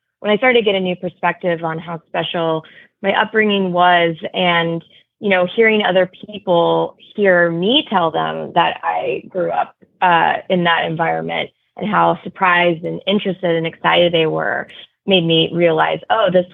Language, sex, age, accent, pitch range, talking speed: English, female, 20-39, American, 170-210 Hz, 165 wpm